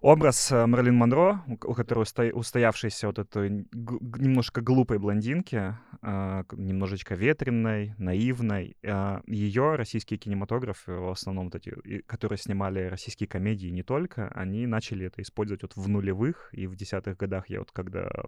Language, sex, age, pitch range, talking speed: Russian, male, 20-39, 95-115 Hz, 135 wpm